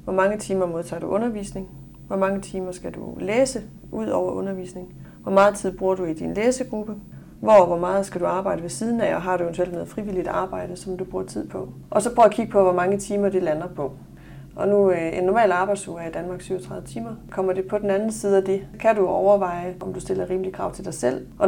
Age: 30-49